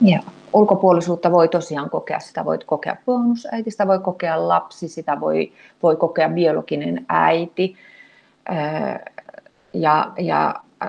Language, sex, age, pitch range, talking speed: Finnish, female, 30-49, 160-220 Hz, 110 wpm